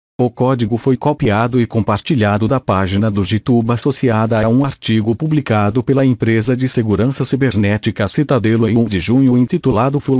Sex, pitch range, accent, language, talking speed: male, 110-135 Hz, Brazilian, Portuguese, 160 wpm